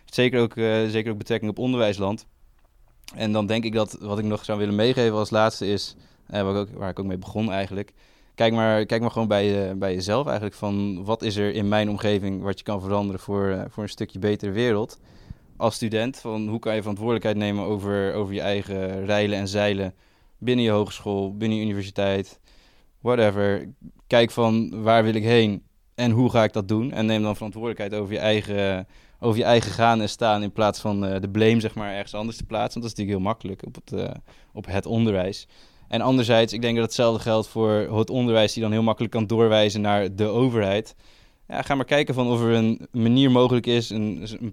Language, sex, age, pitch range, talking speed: Dutch, male, 20-39, 100-115 Hz, 220 wpm